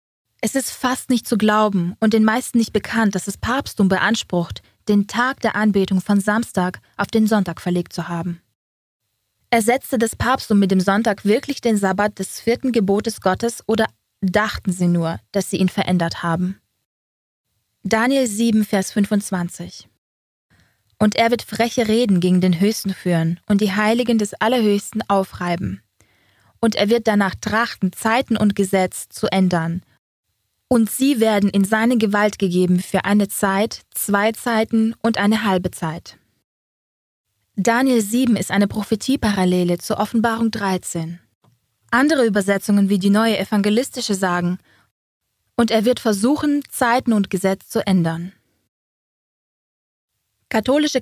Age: 20-39